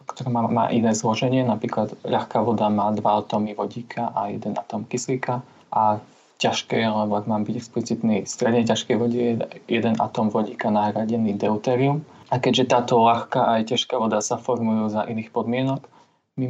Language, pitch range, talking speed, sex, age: Slovak, 110-120 Hz, 165 wpm, male, 20-39